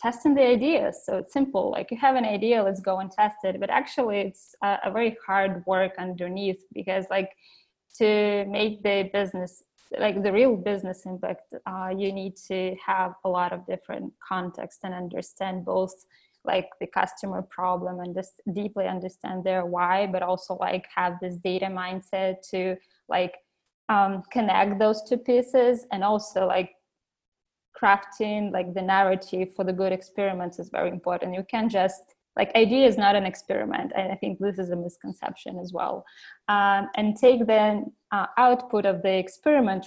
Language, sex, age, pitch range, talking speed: English, female, 20-39, 185-215 Hz, 170 wpm